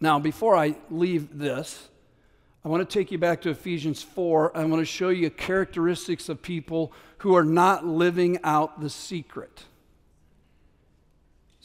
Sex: male